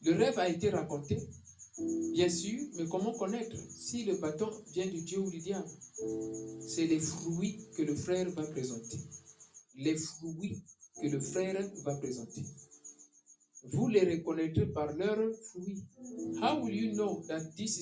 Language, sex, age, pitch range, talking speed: English, male, 50-69, 125-190 Hz, 155 wpm